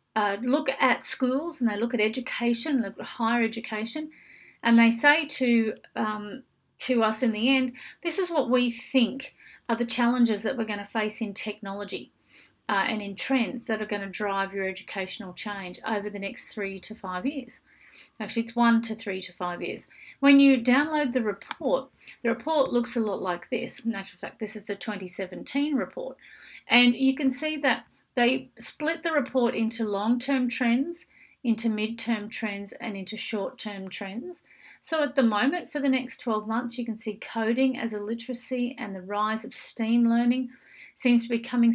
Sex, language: female, English